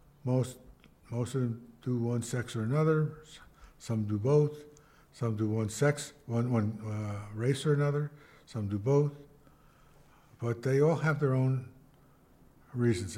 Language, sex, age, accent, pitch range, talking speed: English, male, 60-79, American, 115-145 Hz, 145 wpm